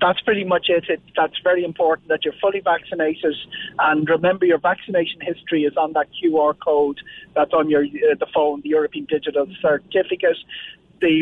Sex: male